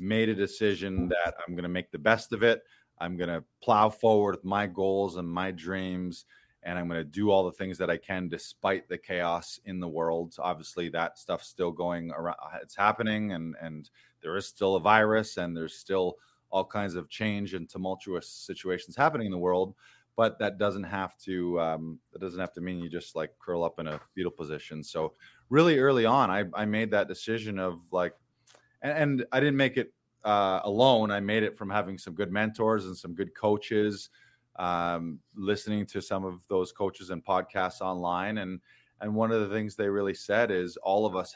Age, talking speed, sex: 20-39, 205 wpm, male